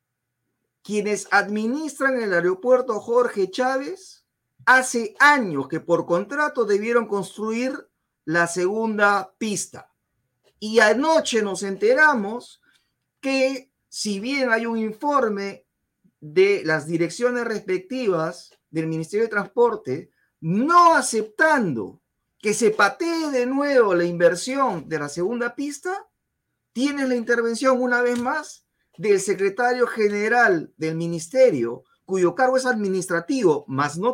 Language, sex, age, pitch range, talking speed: Spanish, male, 40-59, 175-260 Hz, 110 wpm